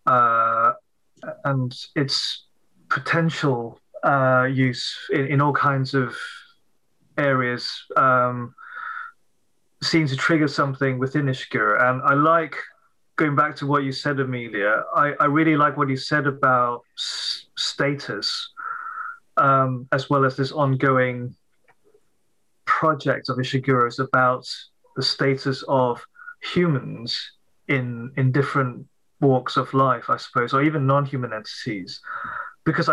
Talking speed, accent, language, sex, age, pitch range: 120 wpm, British, English, male, 30-49, 130-155 Hz